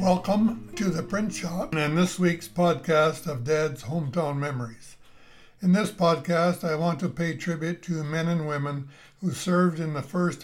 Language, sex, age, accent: English, male, 60-79, American